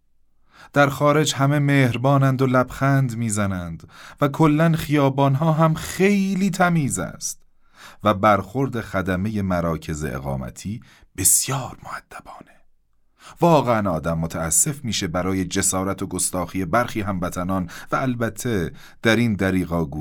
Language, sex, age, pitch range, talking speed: Persian, male, 30-49, 80-120 Hz, 110 wpm